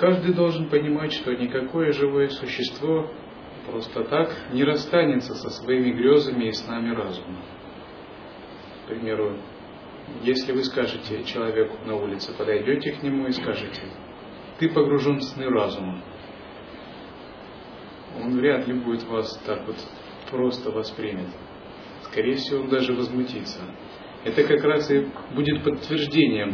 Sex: male